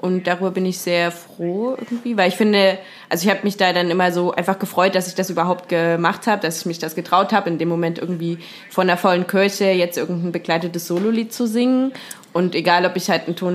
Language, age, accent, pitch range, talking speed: German, 20-39, German, 175-205 Hz, 235 wpm